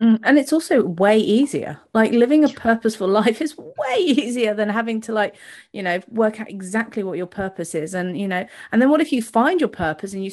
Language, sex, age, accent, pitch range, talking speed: English, female, 30-49, British, 185-235 Hz, 225 wpm